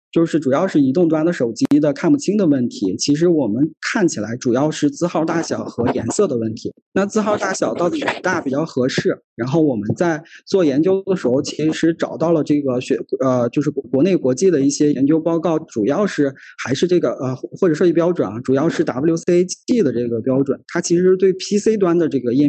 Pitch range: 135-180 Hz